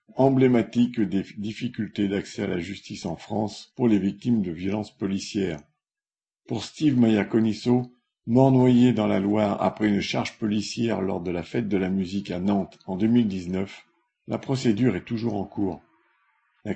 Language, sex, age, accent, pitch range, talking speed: French, male, 50-69, French, 100-120 Hz, 165 wpm